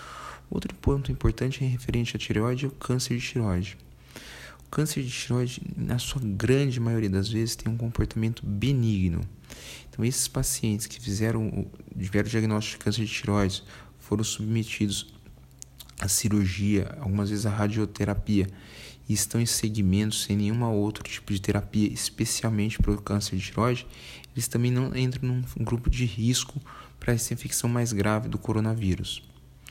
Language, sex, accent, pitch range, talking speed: Portuguese, male, Brazilian, 105-120 Hz, 155 wpm